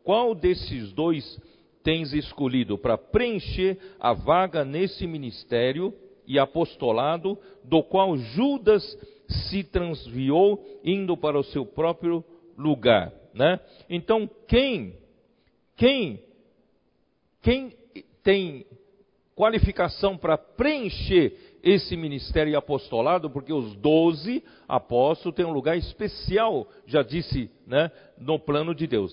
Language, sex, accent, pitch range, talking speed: Portuguese, male, Brazilian, 145-200 Hz, 105 wpm